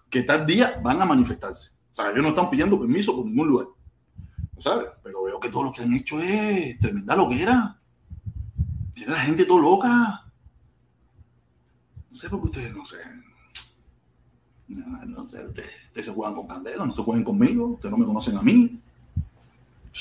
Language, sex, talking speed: Spanish, male, 185 wpm